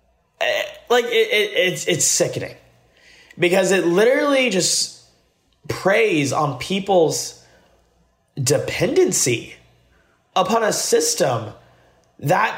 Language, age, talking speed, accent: English, 30-49, 85 wpm, American